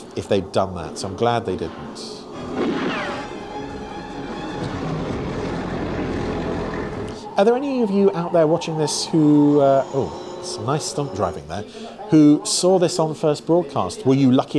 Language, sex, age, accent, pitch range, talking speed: English, male, 40-59, British, 125-195 Hz, 150 wpm